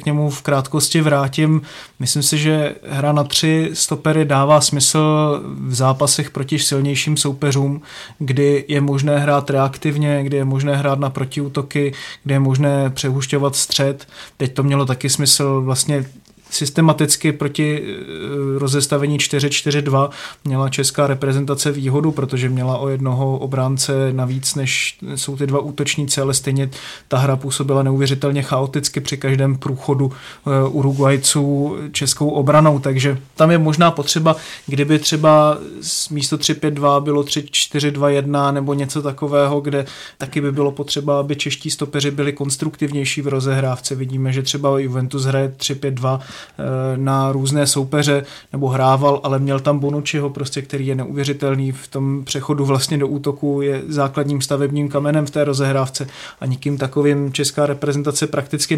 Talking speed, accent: 140 wpm, native